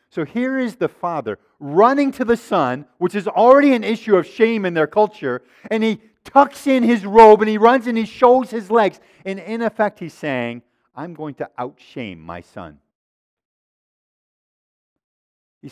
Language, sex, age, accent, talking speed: English, male, 50-69, American, 170 wpm